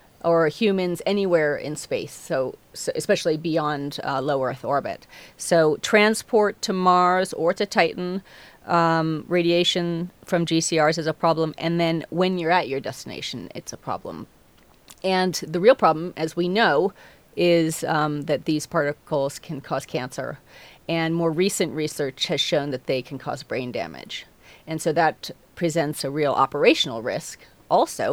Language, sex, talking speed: English, female, 155 wpm